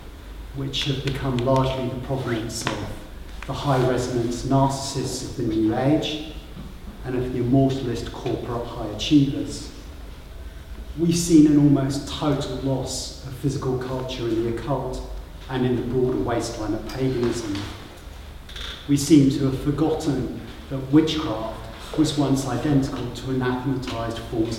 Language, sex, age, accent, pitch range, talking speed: English, male, 40-59, British, 100-135 Hz, 130 wpm